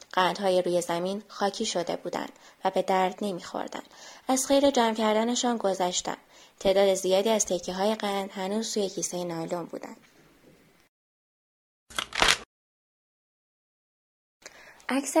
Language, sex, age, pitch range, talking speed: Persian, female, 10-29, 205-265 Hz, 110 wpm